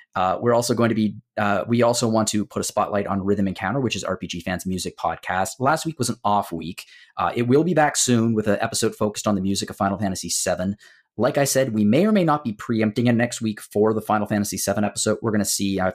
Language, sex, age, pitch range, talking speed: English, male, 30-49, 95-120 Hz, 265 wpm